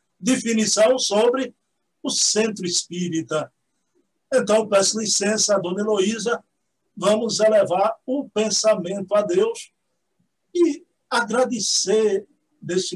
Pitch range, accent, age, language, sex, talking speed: 180-225 Hz, Brazilian, 60-79, Portuguese, male, 90 wpm